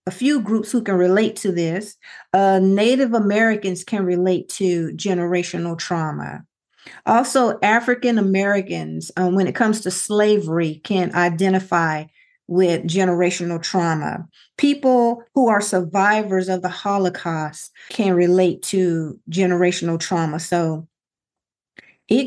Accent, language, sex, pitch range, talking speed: American, English, female, 175-215 Hz, 115 wpm